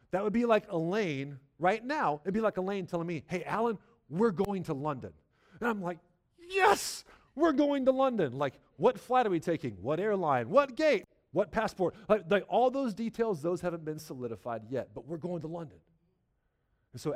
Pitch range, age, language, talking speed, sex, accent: 125-180 Hz, 40-59, English, 200 wpm, male, American